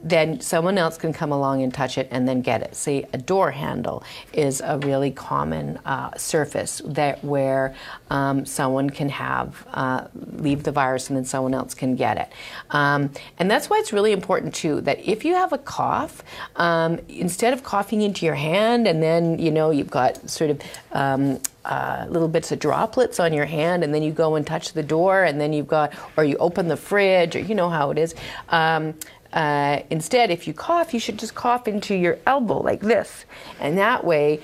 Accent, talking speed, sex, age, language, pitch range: American, 205 wpm, female, 40-59, English, 145-190 Hz